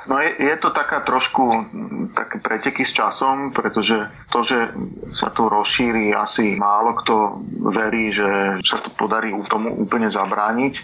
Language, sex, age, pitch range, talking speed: Slovak, male, 30-49, 105-120 Hz, 150 wpm